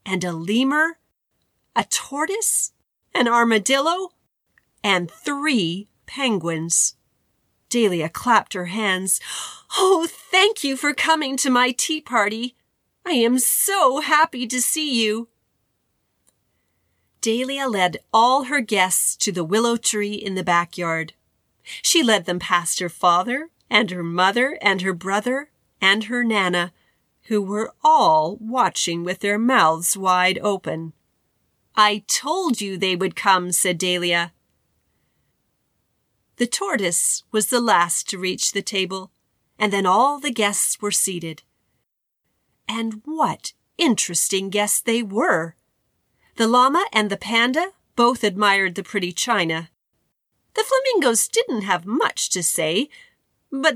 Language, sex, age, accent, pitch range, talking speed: English, female, 40-59, American, 185-260 Hz, 125 wpm